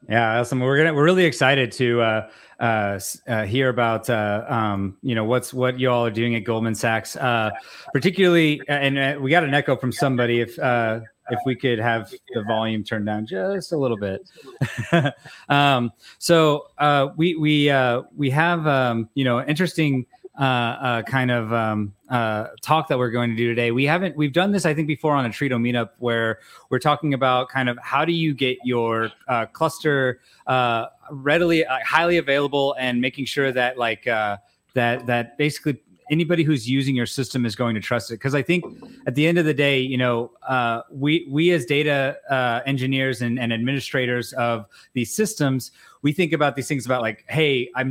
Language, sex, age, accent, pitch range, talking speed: English, male, 30-49, American, 120-145 Hz, 195 wpm